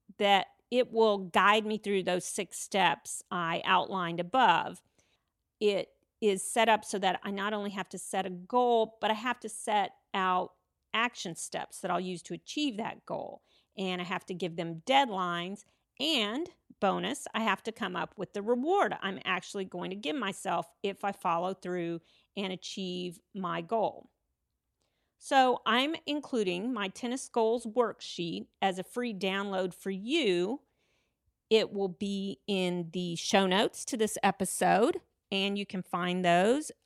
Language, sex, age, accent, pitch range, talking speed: English, female, 40-59, American, 185-230 Hz, 165 wpm